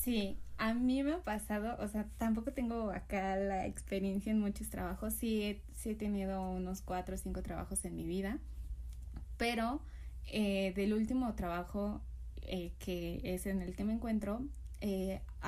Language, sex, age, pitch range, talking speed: Spanish, female, 20-39, 185-225 Hz, 165 wpm